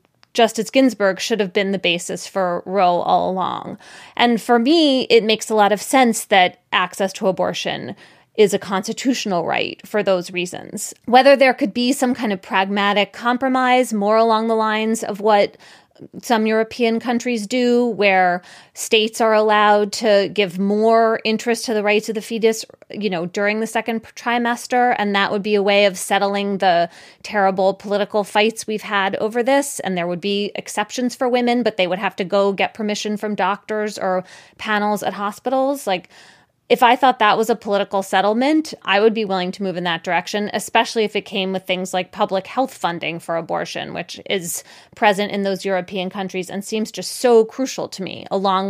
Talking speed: 185 wpm